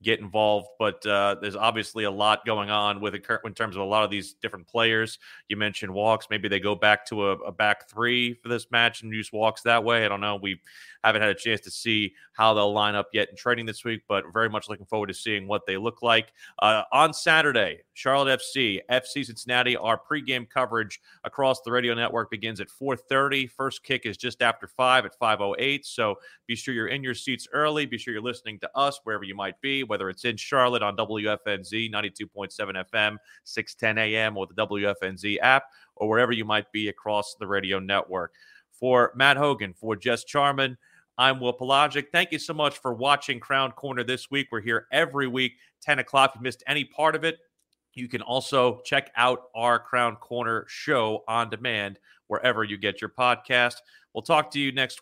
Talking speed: 205 wpm